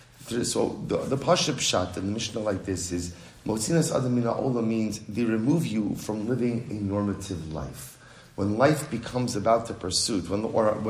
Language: English